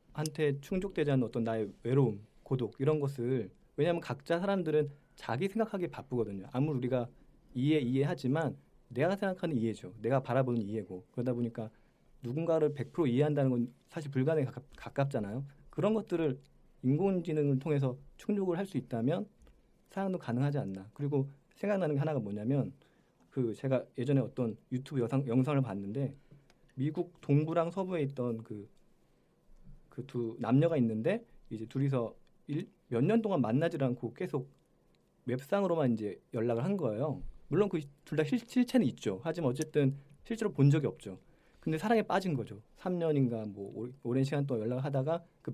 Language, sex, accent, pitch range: Korean, male, native, 120-165 Hz